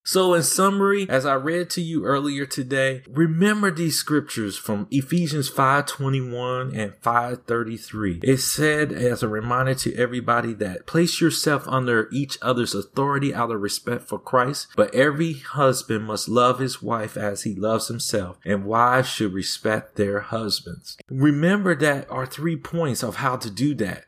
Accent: American